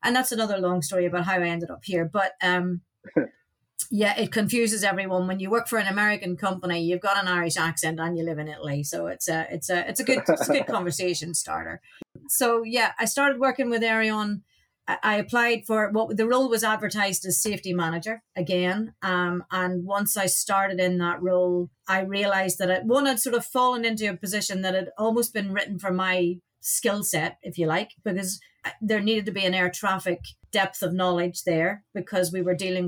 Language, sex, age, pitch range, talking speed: English, female, 30-49, 175-210 Hz, 210 wpm